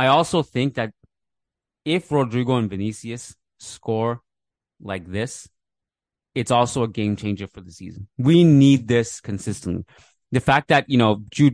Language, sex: English, male